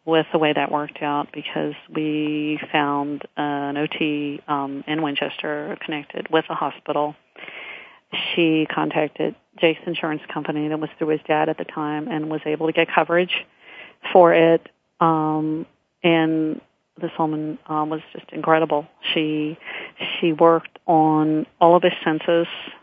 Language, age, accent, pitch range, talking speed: English, 40-59, American, 150-165 Hz, 145 wpm